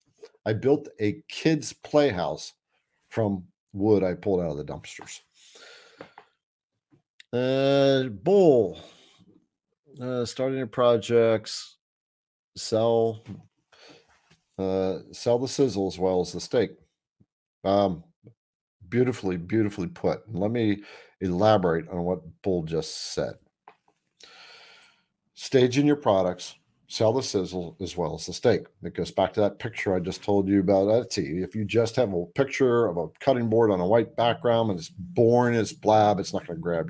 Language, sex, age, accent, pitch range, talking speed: English, male, 50-69, American, 95-130 Hz, 145 wpm